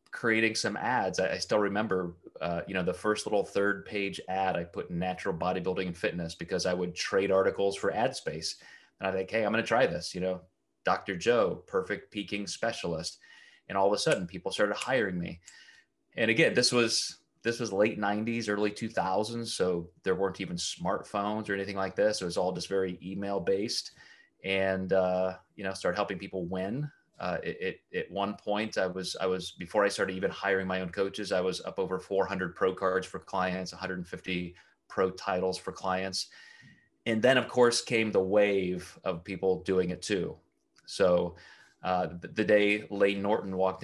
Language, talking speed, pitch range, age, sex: English, 195 wpm, 90-100 Hz, 30-49, male